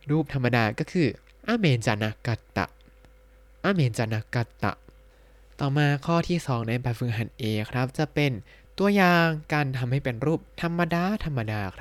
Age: 20-39